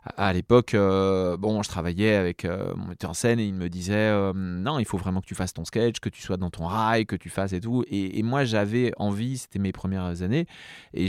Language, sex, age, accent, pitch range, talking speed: French, male, 30-49, French, 95-115 Hz, 255 wpm